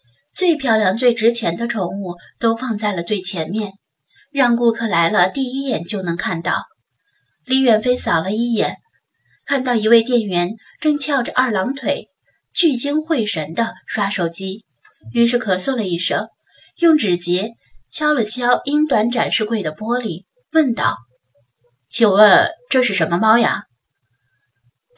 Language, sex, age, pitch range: Chinese, female, 20-39, 160-240 Hz